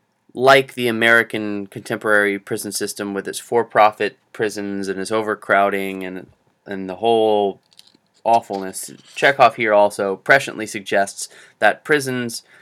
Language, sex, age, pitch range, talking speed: English, male, 20-39, 105-120 Hz, 120 wpm